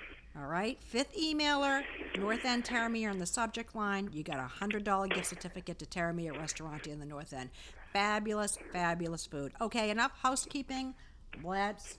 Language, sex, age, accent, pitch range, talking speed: English, female, 50-69, American, 170-245 Hz, 155 wpm